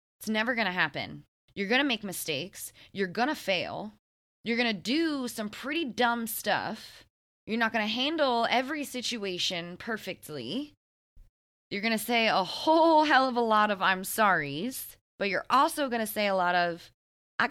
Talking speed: 180 wpm